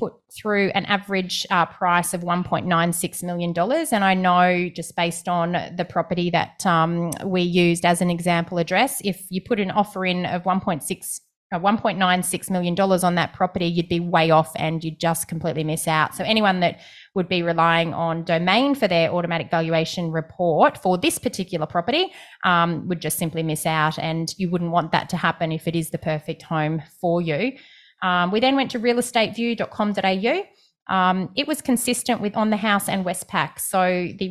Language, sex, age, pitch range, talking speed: English, female, 20-39, 170-205 Hz, 180 wpm